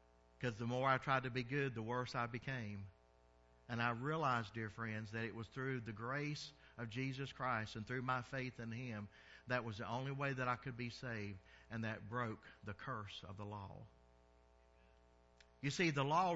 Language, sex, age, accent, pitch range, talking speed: English, male, 50-69, American, 110-155 Hz, 200 wpm